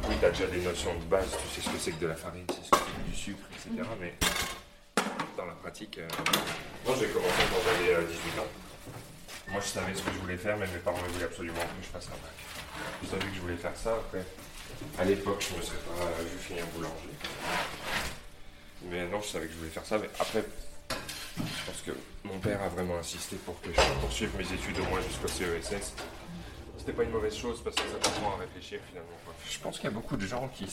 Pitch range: 85-100 Hz